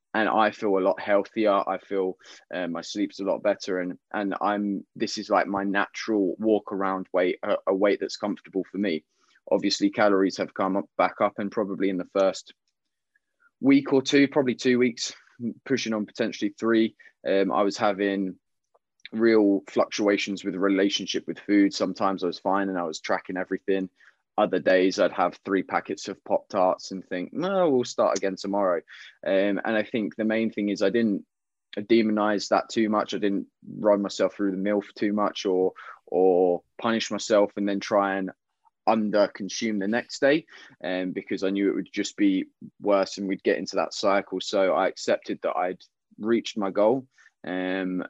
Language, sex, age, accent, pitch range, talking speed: English, male, 20-39, British, 95-110 Hz, 190 wpm